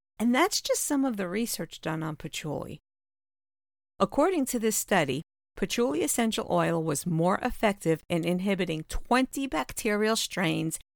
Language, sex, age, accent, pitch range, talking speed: English, female, 50-69, American, 160-220 Hz, 135 wpm